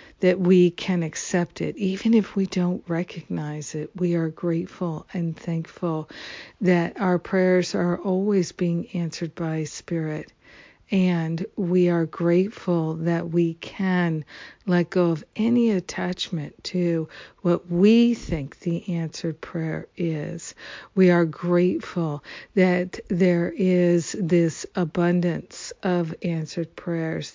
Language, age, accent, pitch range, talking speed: English, 50-69, American, 165-185 Hz, 125 wpm